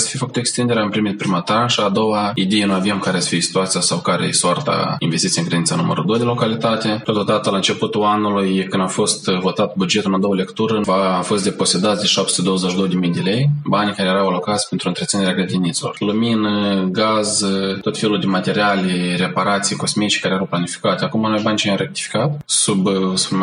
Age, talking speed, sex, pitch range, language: 20-39, 190 wpm, male, 95-115 Hz, Romanian